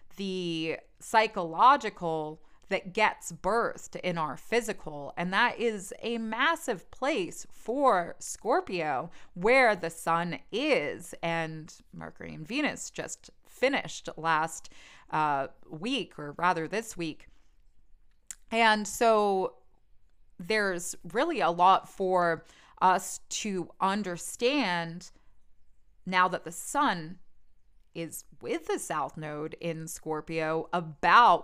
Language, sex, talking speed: English, female, 105 wpm